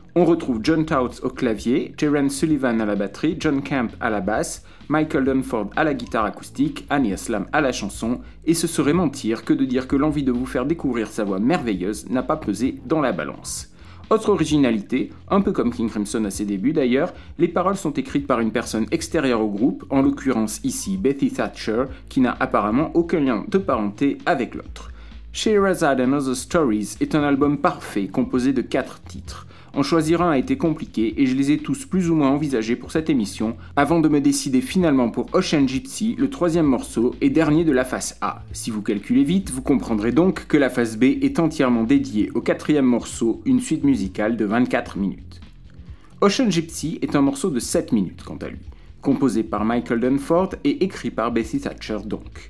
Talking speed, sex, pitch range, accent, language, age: 200 wpm, male, 110-165 Hz, French, French, 40-59